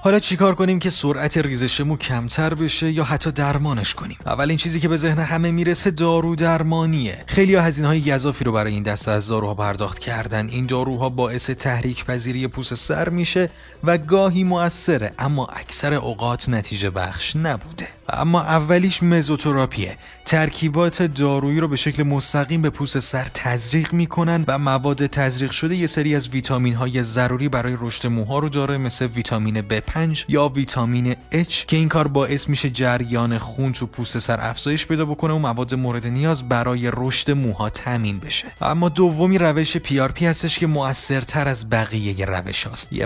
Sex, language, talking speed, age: male, Persian, 170 wpm, 30-49